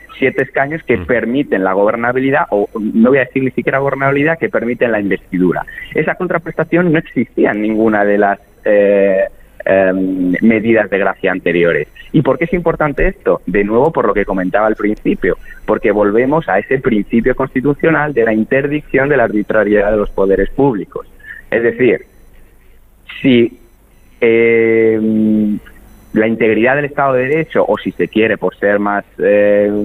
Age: 30-49